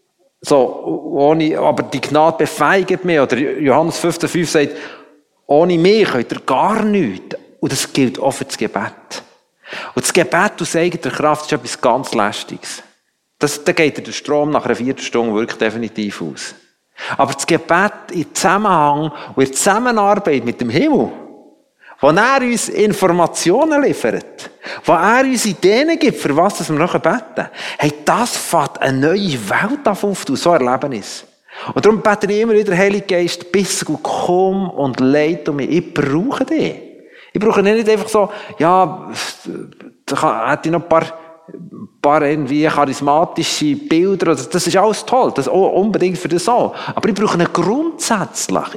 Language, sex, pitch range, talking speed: German, male, 150-200 Hz, 155 wpm